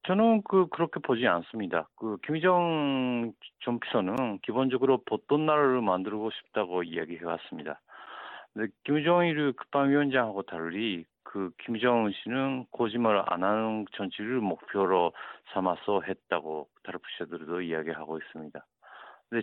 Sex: male